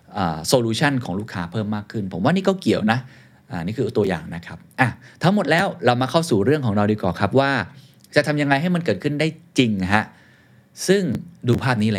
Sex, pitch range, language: male, 95-135 Hz, Thai